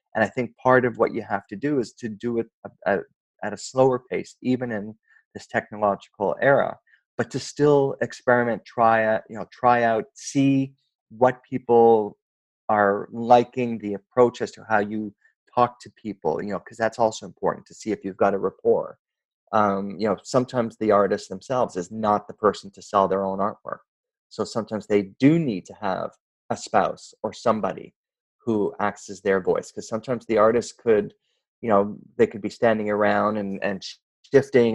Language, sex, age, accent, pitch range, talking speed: English, male, 30-49, American, 105-125 Hz, 190 wpm